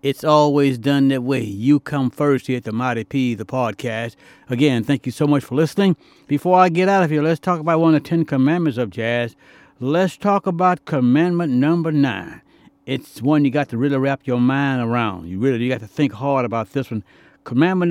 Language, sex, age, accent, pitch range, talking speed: English, male, 60-79, American, 120-150 Hz, 220 wpm